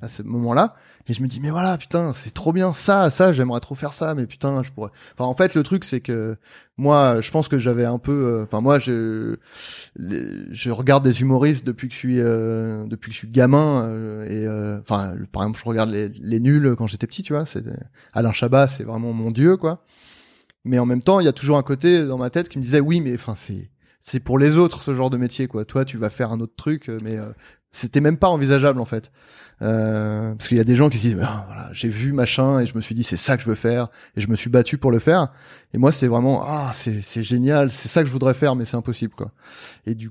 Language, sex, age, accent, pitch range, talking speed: French, male, 20-39, French, 115-140 Hz, 270 wpm